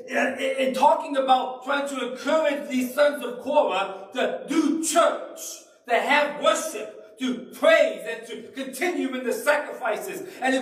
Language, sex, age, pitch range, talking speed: English, male, 50-69, 275-335 Hz, 145 wpm